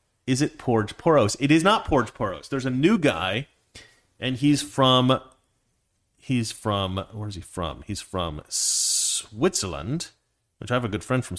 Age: 30-49